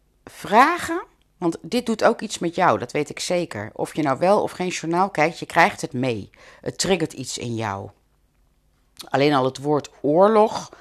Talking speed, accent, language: 190 wpm, Dutch, Dutch